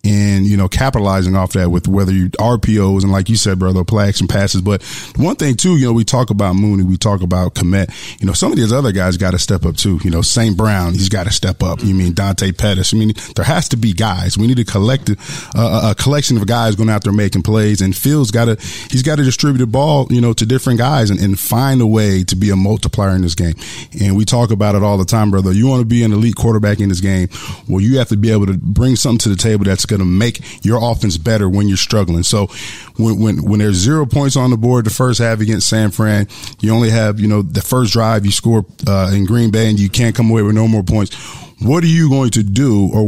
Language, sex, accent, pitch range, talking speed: English, male, American, 100-120 Hz, 265 wpm